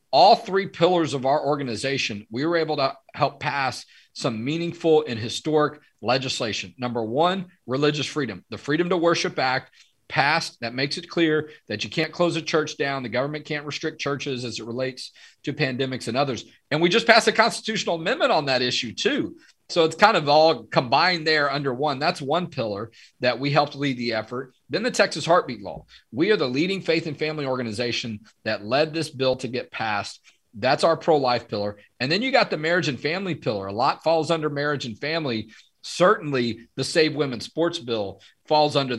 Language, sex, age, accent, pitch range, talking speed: English, male, 40-59, American, 120-165 Hz, 195 wpm